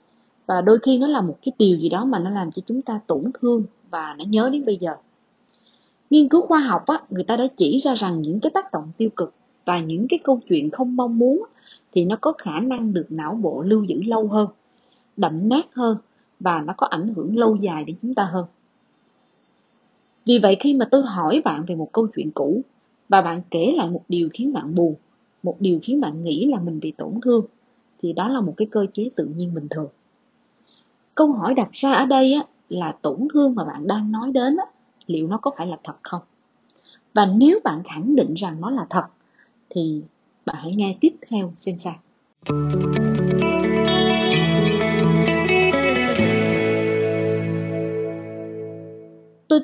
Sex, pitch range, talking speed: female, 170-255 Hz, 185 wpm